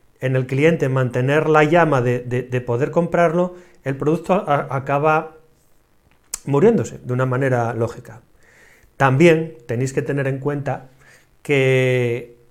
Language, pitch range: Spanish, 125-165 Hz